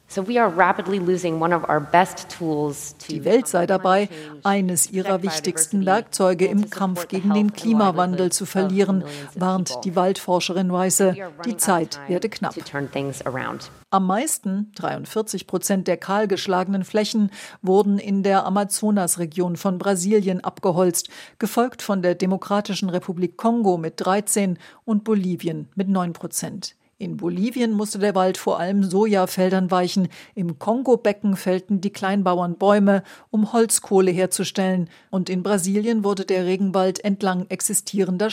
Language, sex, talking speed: German, female, 120 wpm